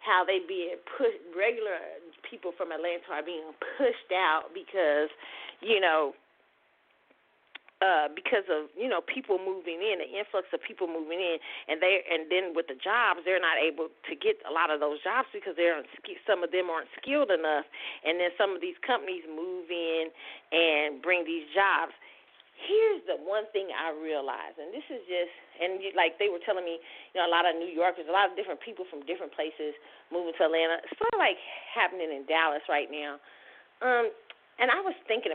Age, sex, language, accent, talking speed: 40-59, female, English, American, 195 wpm